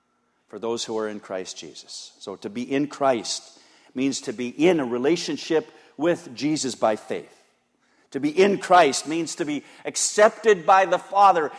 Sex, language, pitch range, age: male, English, 115-195 Hz, 50-69